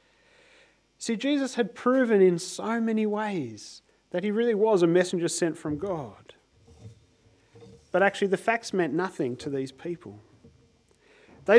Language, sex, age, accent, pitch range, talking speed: English, male, 30-49, Australian, 155-210 Hz, 140 wpm